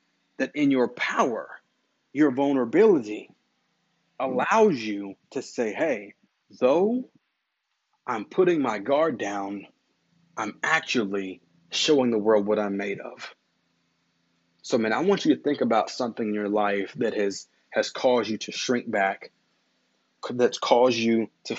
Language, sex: English, male